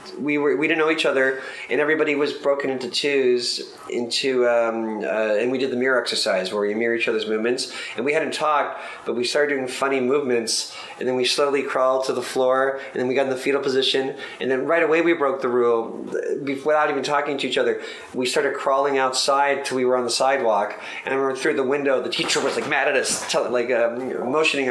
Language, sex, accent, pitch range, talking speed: English, male, American, 125-155 Hz, 230 wpm